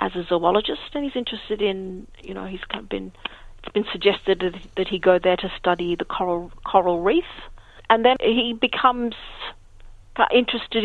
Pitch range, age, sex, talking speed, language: 180-205 Hz, 40-59, female, 160 wpm, English